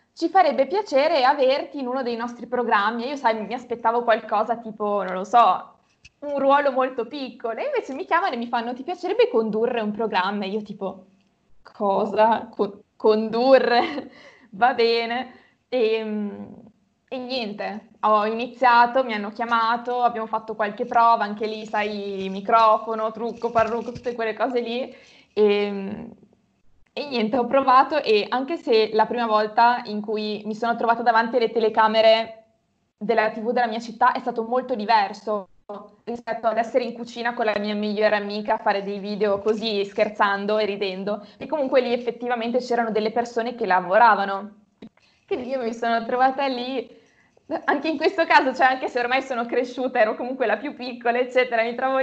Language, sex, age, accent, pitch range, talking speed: Italian, female, 20-39, native, 215-250 Hz, 165 wpm